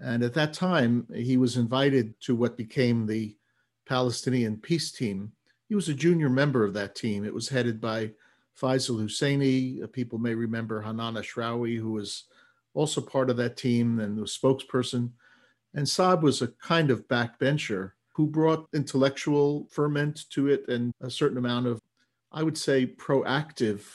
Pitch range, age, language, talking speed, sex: 115-145 Hz, 50-69, English, 165 wpm, male